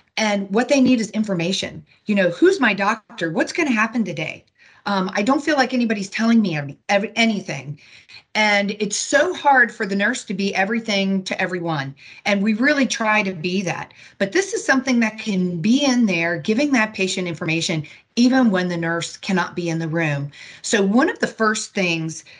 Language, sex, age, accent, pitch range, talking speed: English, female, 40-59, American, 180-235 Hz, 195 wpm